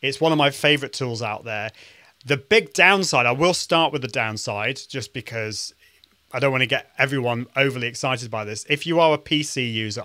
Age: 30-49